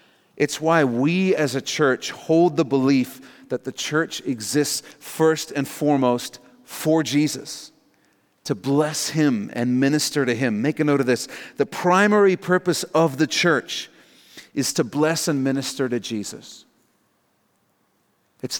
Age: 40-59